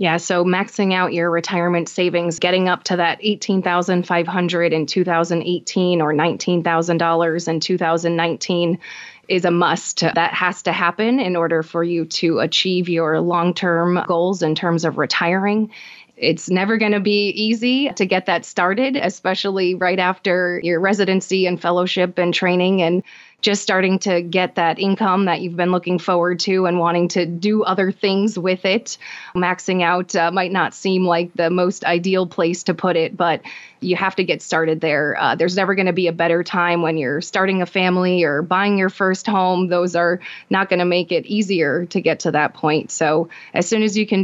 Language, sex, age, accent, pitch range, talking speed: English, female, 20-39, American, 170-185 Hz, 185 wpm